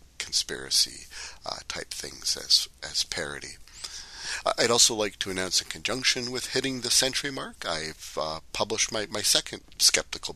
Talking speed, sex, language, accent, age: 150 wpm, male, English, American, 40-59